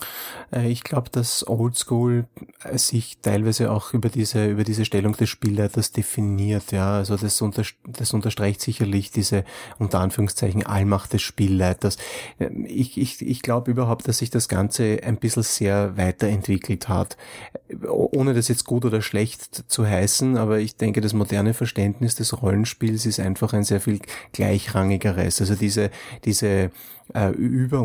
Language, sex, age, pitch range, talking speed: German, male, 30-49, 100-115 Hz, 145 wpm